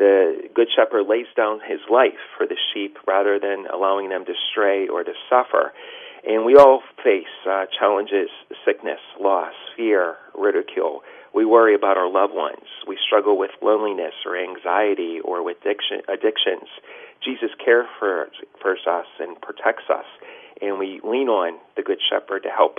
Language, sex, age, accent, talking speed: English, male, 40-59, American, 160 wpm